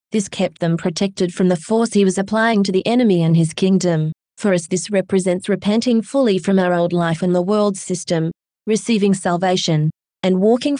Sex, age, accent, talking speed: female, 20-39, Australian, 190 wpm